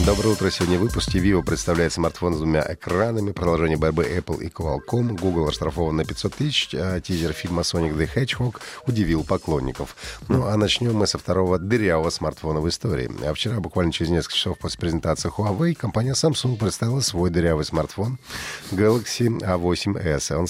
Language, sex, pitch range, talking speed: Russian, male, 80-105 Hz, 165 wpm